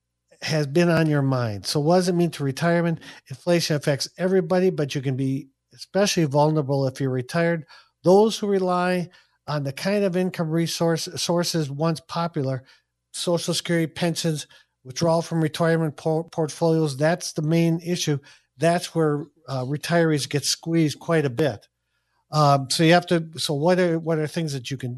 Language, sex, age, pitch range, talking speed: English, male, 50-69, 140-175 Hz, 170 wpm